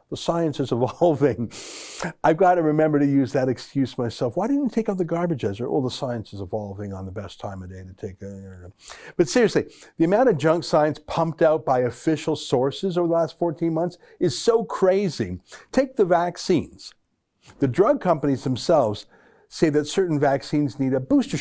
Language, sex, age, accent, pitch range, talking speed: English, male, 60-79, American, 130-170 Hz, 200 wpm